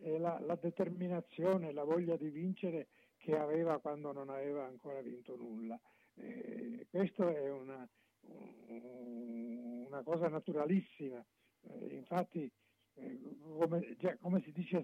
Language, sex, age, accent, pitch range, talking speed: Italian, male, 60-79, native, 145-180 Hz, 120 wpm